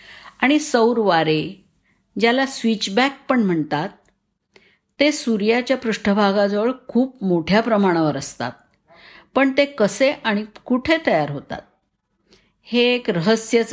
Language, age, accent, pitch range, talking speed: Marathi, 50-69, native, 195-245 Hz, 105 wpm